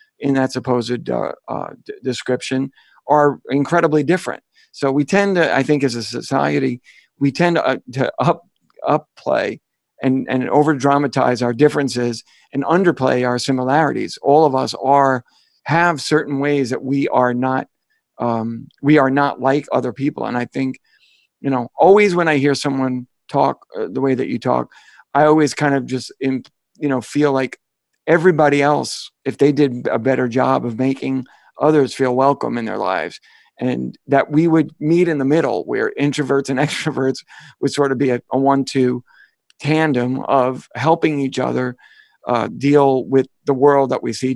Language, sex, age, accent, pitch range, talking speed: English, male, 50-69, American, 130-150 Hz, 175 wpm